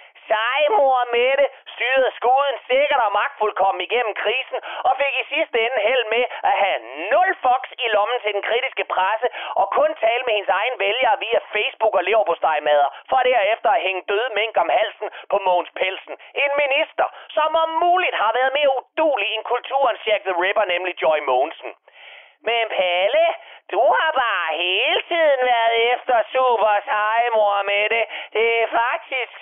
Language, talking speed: Danish, 160 wpm